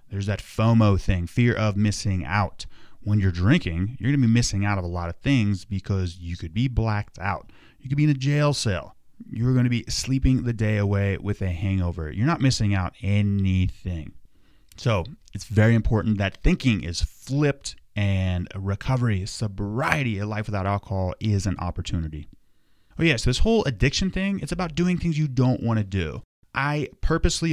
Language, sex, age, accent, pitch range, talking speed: English, male, 30-49, American, 95-130 Hz, 190 wpm